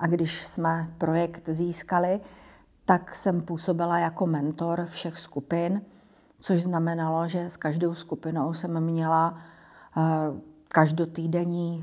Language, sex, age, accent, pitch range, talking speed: Czech, female, 40-59, native, 160-175 Hz, 105 wpm